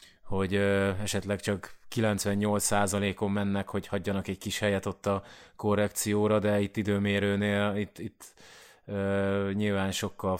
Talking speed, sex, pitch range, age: 105 wpm, male, 100-110 Hz, 20-39